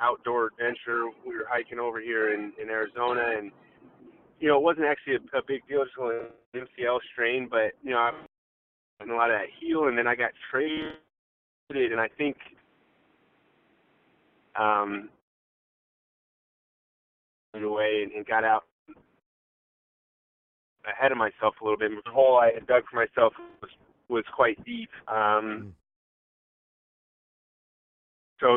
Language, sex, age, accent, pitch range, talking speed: English, male, 30-49, American, 110-130 Hz, 145 wpm